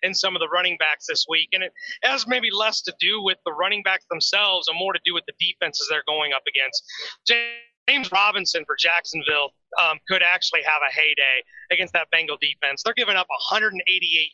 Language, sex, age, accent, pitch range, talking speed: English, male, 30-49, American, 170-220 Hz, 205 wpm